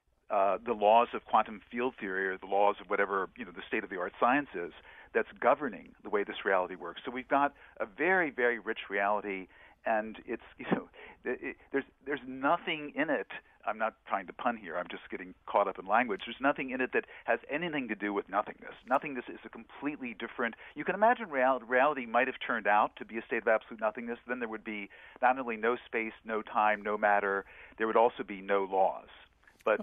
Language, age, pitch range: English, 50-69, 105-130 Hz